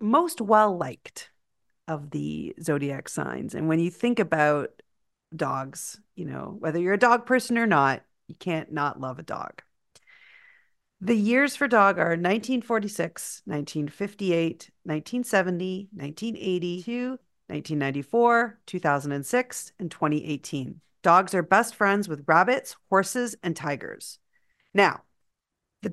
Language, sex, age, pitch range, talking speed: English, female, 40-59, 165-230 Hz, 120 wpm